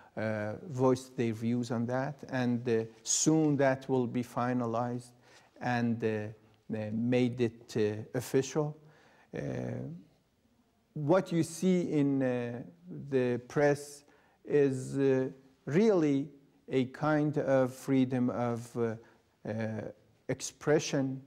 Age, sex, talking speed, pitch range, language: 50-69, male, 105 wpm, 120-150 Hz, English